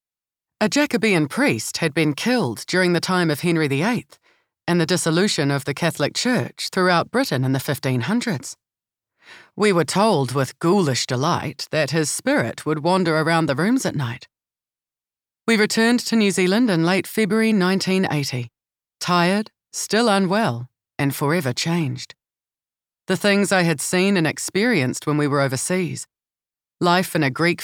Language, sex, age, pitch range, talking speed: English, female, 30-49, 150-195 Hz, 150 wpm